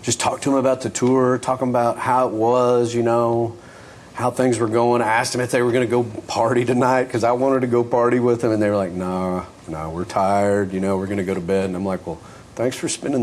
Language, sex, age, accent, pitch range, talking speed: English, male, 40-59, American, 100-125 Hz, 270 wpm